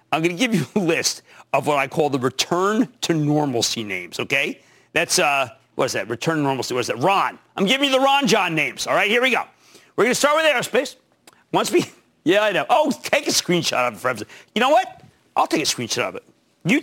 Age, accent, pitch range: 50-69, American, 160-255 Hz